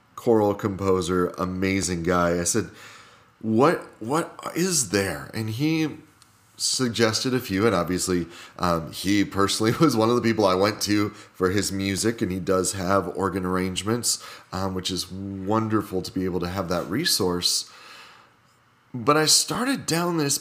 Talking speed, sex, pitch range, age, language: 155 wpm, male, 95-120 Hz, 30-49, English